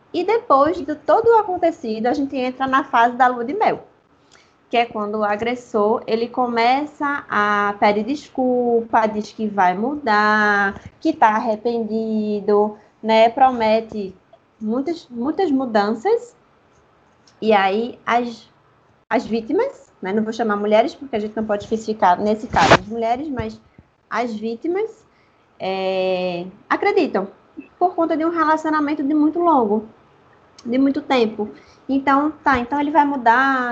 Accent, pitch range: Brazilian, 215-285 Hz